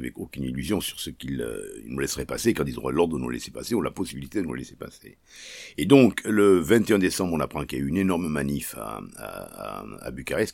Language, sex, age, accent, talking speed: French, male, 60-79, French, 250 wpm